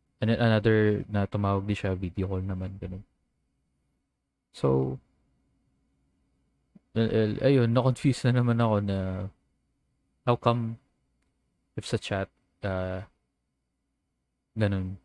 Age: 20-39